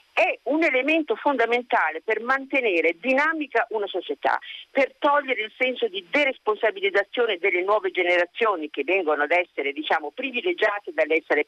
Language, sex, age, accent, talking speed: Italian, female, 50-69, native, 130 wpm